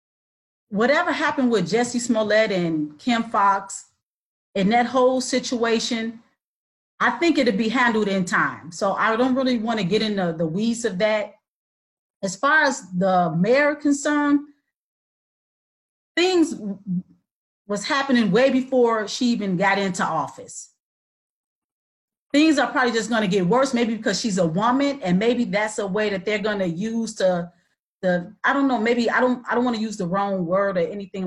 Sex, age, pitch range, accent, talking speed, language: female, 40-59, 200-260 Hz, American, 170 wpm, English